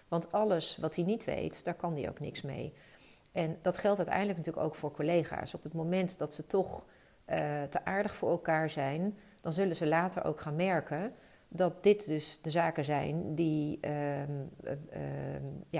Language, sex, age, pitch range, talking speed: Dutch, female, 40-59, 145-170 Hz, 180 wpm